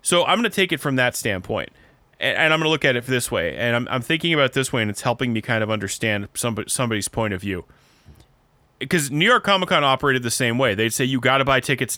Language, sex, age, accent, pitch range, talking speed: English, male, 20-39, American, 115-155 Hz, 260 wpm